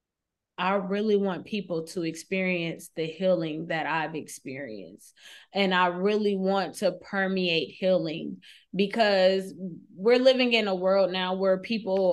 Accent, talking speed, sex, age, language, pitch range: American, 135 wpm, female, 20-39, English, 180-210 Hz